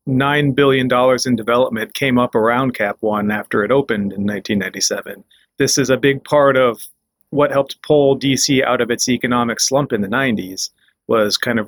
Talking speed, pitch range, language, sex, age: 170 wpm, 120-145 Hz, English, male, 30-49